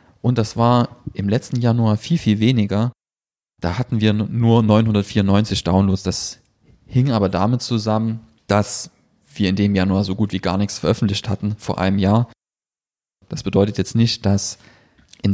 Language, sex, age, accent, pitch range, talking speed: German, male, 30-49, German, 95-115 Hz, 160 wpm